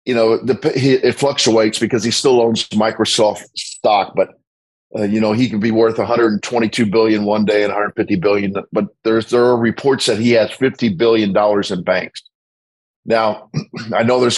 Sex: male